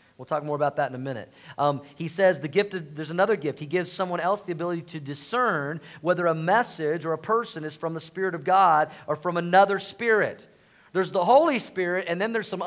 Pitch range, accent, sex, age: 150-195 Hz, American, male, 40-59